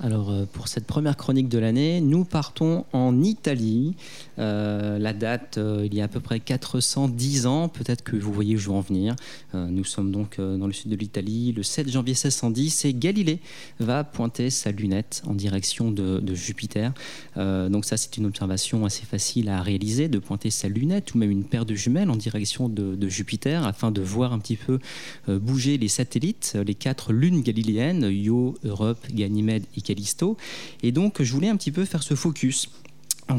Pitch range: 105-135 Hz